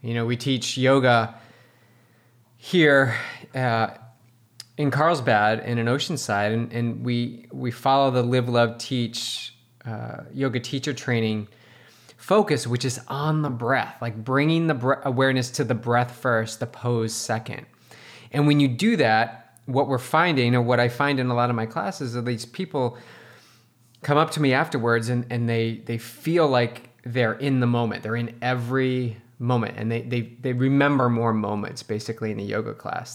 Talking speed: 175 wpm